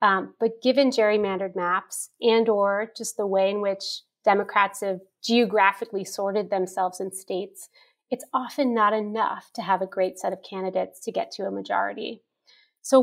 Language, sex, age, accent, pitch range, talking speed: English, female, 30-49, American, 190-235 Hz, 165 wpm